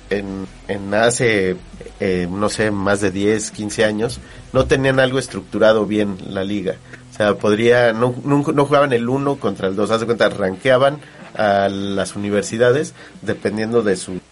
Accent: Mexican